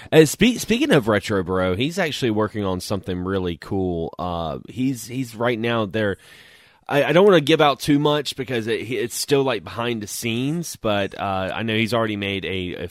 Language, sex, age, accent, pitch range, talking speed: English, male, 30-49, American, 90-115 Hz, 205 wpm